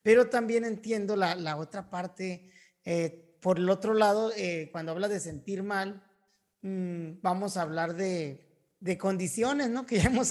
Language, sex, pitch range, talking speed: Spanish, male, 175-215 Hz, 170 wpm